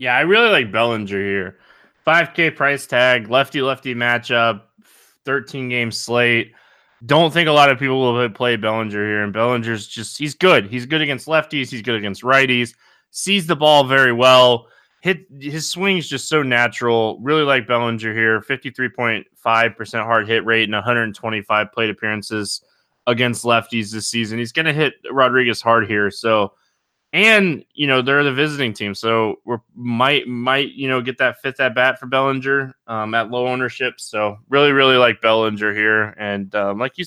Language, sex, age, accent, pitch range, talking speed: English, male, 20-39, American, 115-140 Hz, 175 wpm